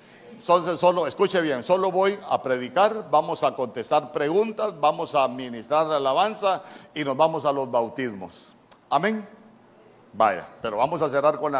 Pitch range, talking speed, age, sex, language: 150-200 Hz, 160 wpm, 50-69, male, Spanish